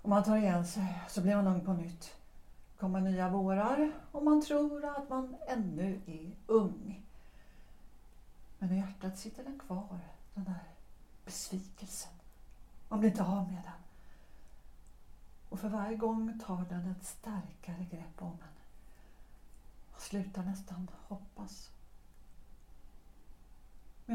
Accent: native